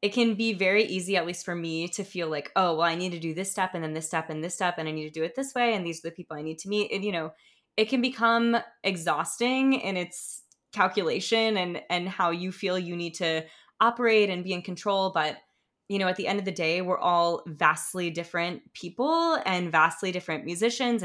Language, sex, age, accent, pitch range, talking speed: English, female, 20-39, American, 170-210 Hz, 240 wpm